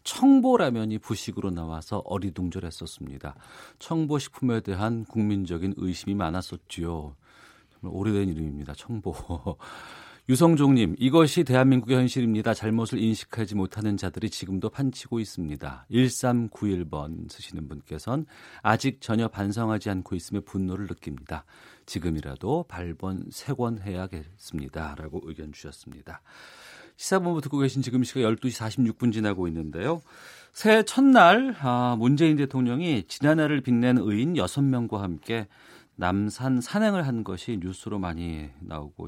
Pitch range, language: 90-125 Hz, Korean